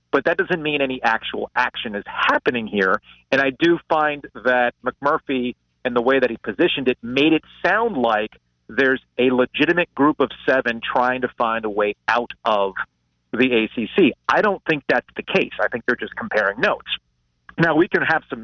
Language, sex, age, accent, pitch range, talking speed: English, male, 40-59, American, 100-140 Hz, 190 wpm